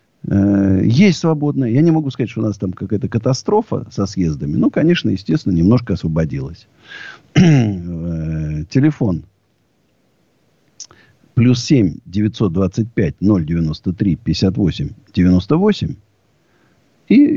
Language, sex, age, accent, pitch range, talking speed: Russian, male, 50-69, native, 90-135 Hz, 75 wpm